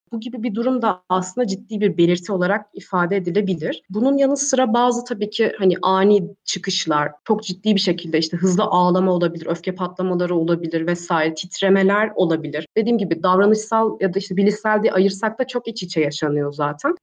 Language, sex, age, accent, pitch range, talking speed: Turkish, female, 30-49, native, 175-225 Hz, 175 wpm